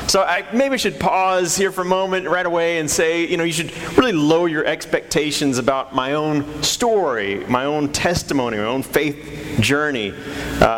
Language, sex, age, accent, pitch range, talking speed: English, male, 40-59, American, 135-165 Hz, 185 wpm